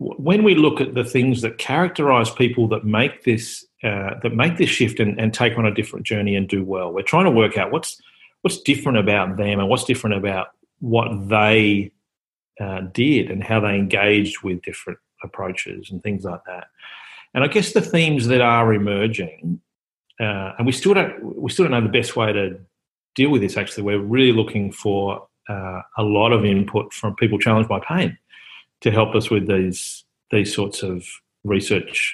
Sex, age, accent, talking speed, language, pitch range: male, 40-59, Australian, 195 wpm, English, 100-130 Hz